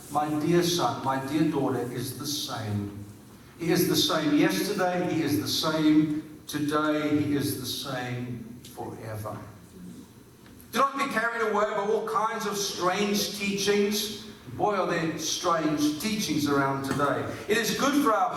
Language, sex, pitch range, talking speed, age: English, male, 150-210 Hz, 155 wpm, 50-69